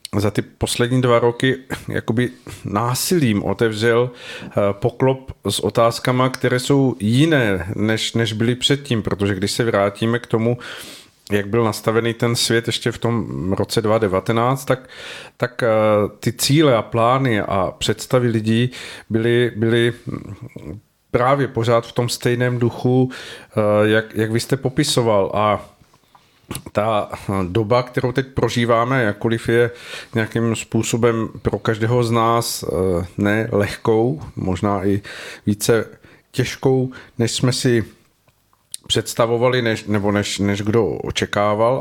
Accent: native